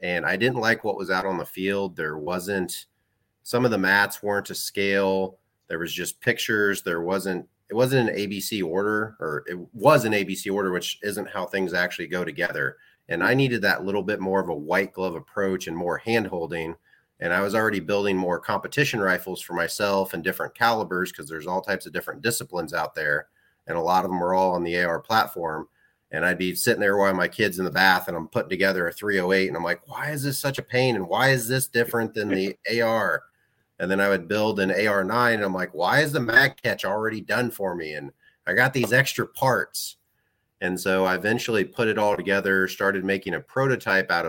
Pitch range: 95-110 Hz